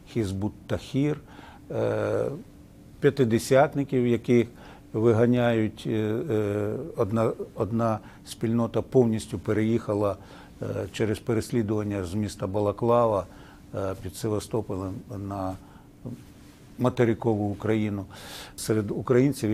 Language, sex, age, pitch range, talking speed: Ukrainian, male, 50-69, 105-130 Hz, 65 wpm